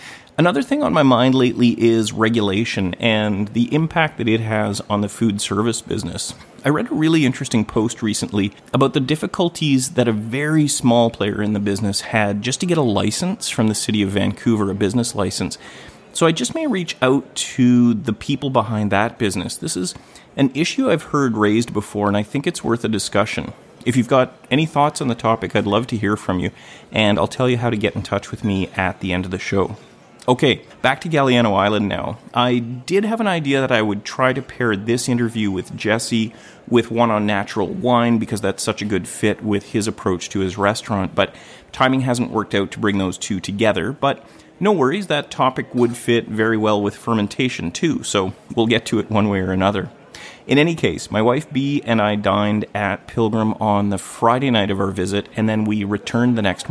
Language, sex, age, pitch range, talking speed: English, male, 30-49, 105-130 Hz, 215 wpm